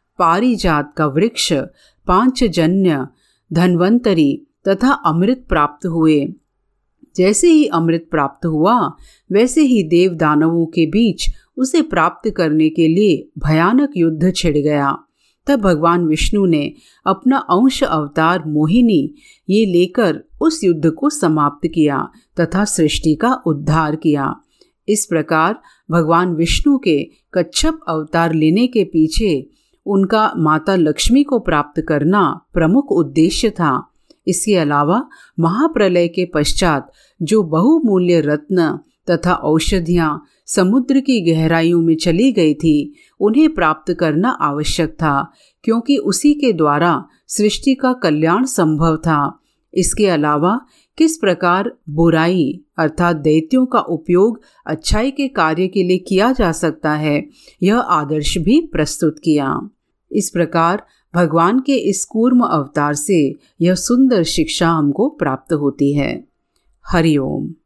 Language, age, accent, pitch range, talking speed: Hindi, 50-69, native, 160-220 Hz, 125 wpm